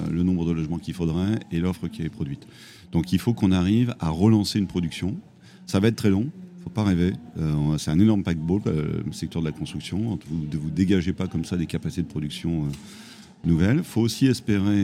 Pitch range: 85-100 Hz